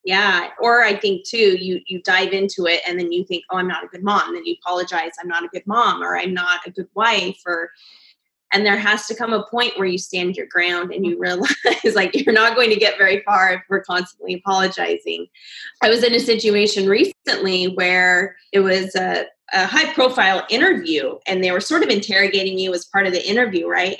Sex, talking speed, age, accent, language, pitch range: female, 225 wpm, 20-39, American, English, 185-230 Hz